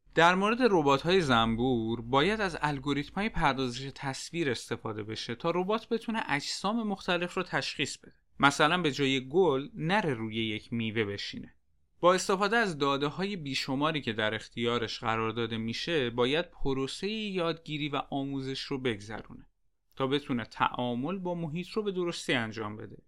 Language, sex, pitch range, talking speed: Persian, male, 120-160 Hz, 155 wpm